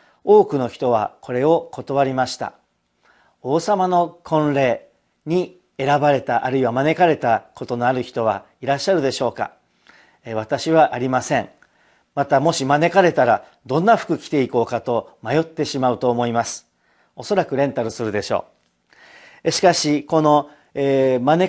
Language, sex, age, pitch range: Japanese, male, 50-69, 130-180 Hz